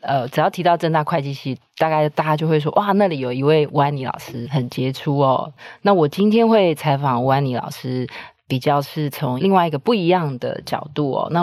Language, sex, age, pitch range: Chinese, female, 20-39, 140-175 Hz